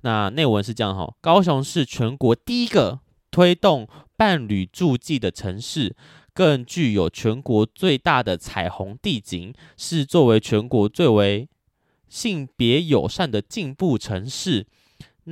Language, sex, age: Chinese, male, 20-39